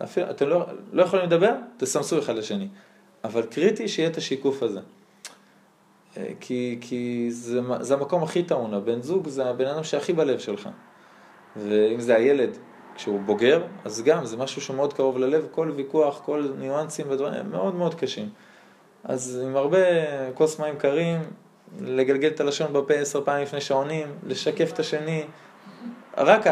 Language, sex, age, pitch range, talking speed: Hebrew, male, 20-39, 120-155 Hz, 160 wpm